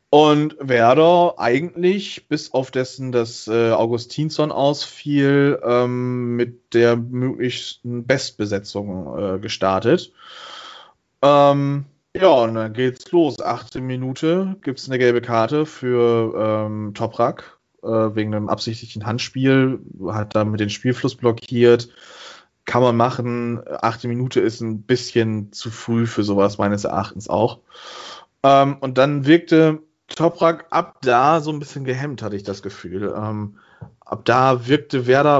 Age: 20-39